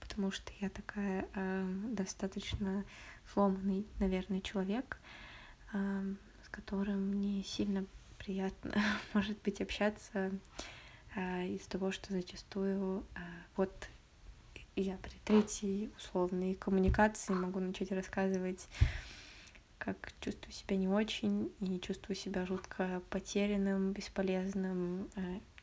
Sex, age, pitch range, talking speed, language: female, 20-39, 190-215 Hz, 110 wpm, Russian